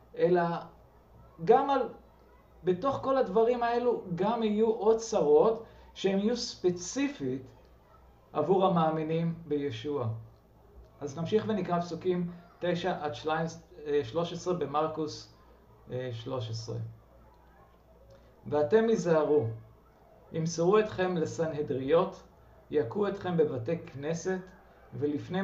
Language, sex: Hebrew, male